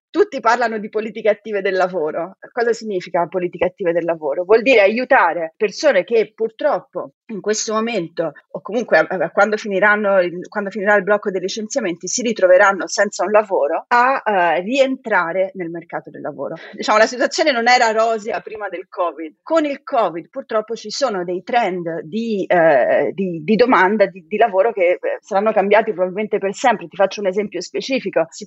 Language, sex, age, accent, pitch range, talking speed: Italian, female, 30-49, native, 185-230 Hz, 170 wpm